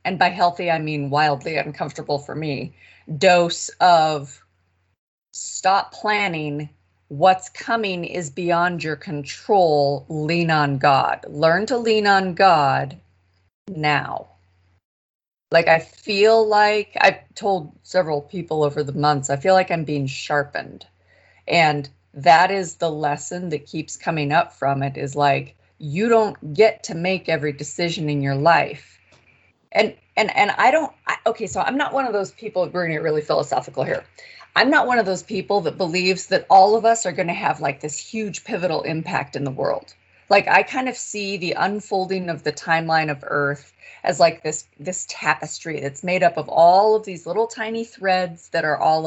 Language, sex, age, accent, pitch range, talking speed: English, female, 30-49, American, 145-190 Hz, 170 wpm